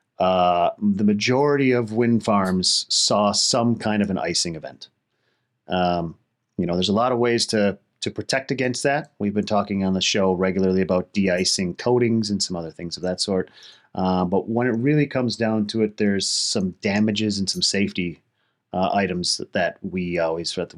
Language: English